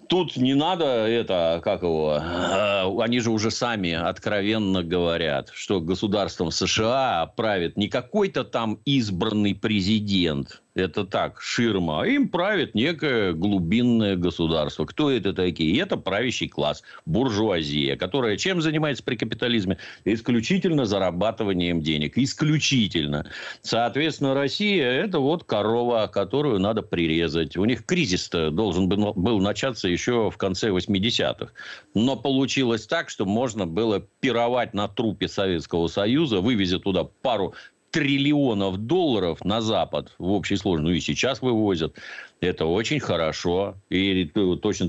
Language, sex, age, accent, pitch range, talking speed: Russian, male, 50-69, native, 85-115 Hz, 125 wpm